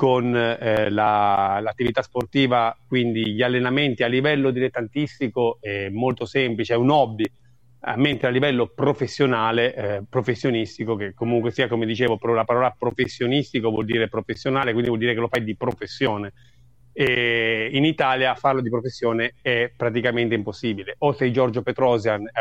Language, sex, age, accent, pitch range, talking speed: Italian, male, 30-49, native, 115-130 Hz, 145 wpm